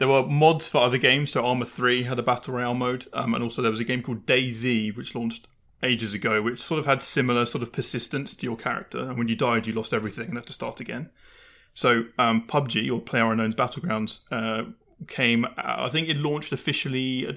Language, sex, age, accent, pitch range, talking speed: English, male, 30-49, British, 115-135 Hz, 220 wpm